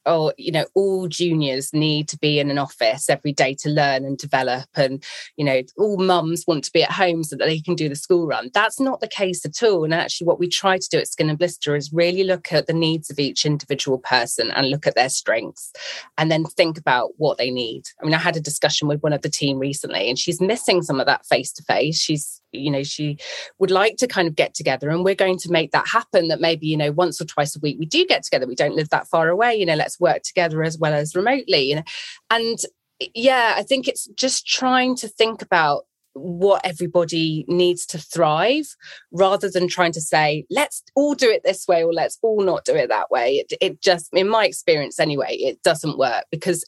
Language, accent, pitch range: English, British, 150-190 Hz